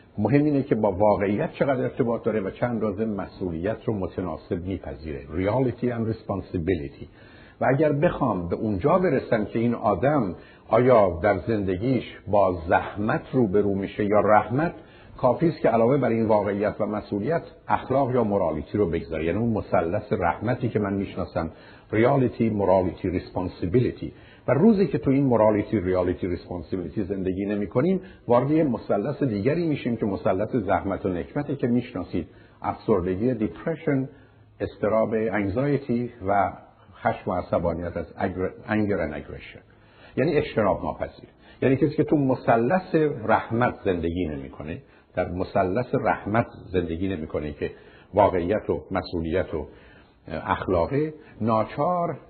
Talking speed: 135 wpm